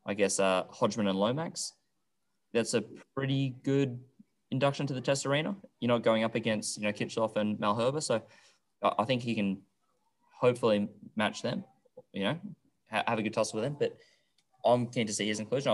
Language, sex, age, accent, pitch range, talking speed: English, male, 20-39, Australian, 105-130 Hz, 185 wpm